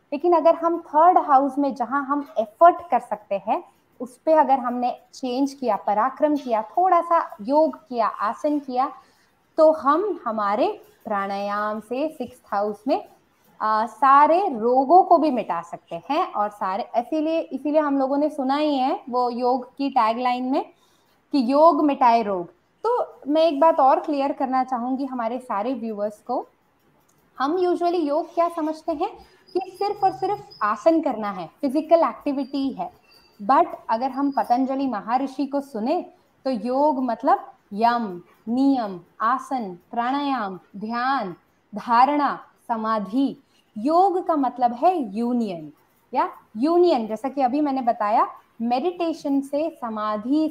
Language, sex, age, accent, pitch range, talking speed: Hindi, female, 20-39, native, 235-320 Hz, 145 wpm